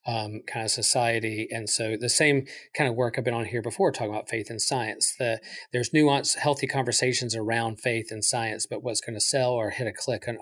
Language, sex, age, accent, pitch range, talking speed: English, male, 40-59, American, 115-130 Hz, 230 wpm